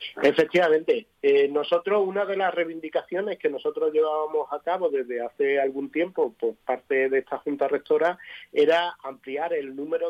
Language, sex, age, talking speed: Spanish, male, 30-49, 155 wpm